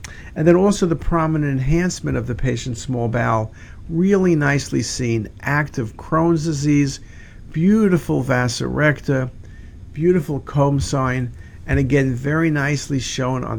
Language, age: English, 50-69